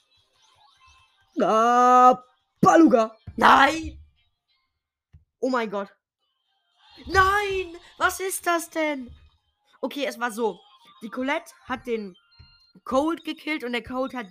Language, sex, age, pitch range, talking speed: German, female, 20-39, 155-250 Hz, 105 wpm